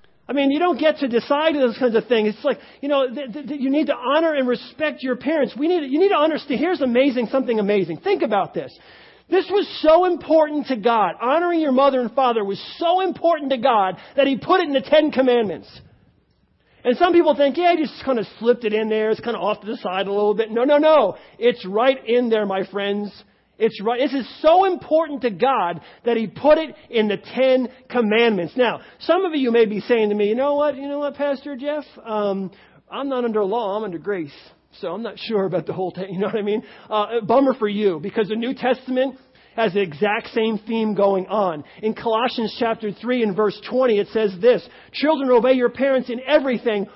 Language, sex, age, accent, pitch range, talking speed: English, male, 40-59, American, 215-285 Hz, 230 wpm